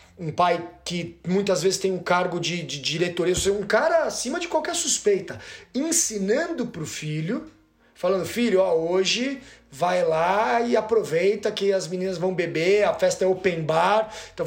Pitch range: 165-210 Hz